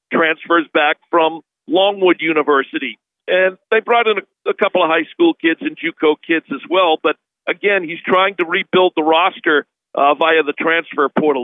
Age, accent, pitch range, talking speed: 50-69, American, 165-195 Hz, 180 wpm